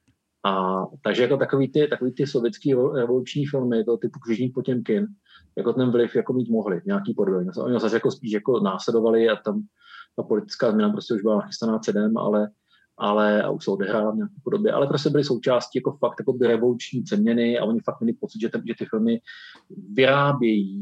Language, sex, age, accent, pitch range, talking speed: Czech, male, 30-49, native, 110-155 Hz, 190 wpm